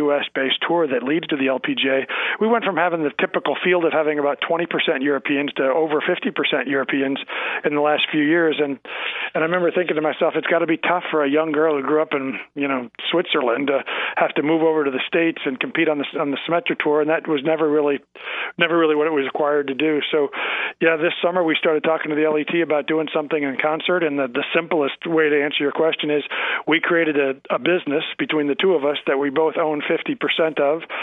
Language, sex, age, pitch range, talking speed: English, male, 40-59, 145-160 Hz, 230 wpm